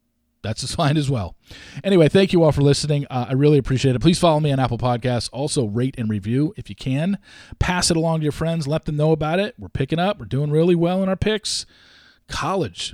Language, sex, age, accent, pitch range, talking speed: English, male, 40-59, American, 120-155 Hz, 235 wpm